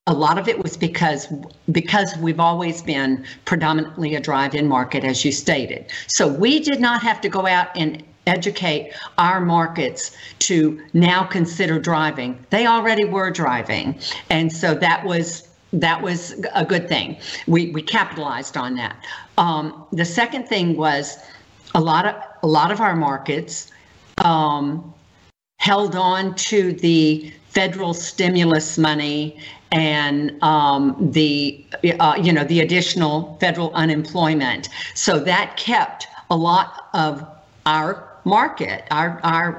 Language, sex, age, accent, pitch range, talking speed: English, female, 50-69, American, 150-180 Hz, 140 wpm